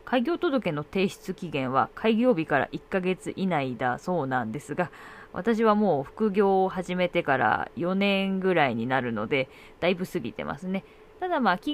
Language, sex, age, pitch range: Japanese, female, 20-39, 150-210 Hz